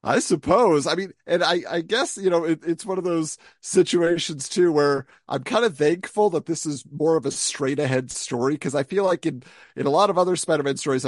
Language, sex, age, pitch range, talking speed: English, male, 40-59, 140-180 Hz, 235 wpm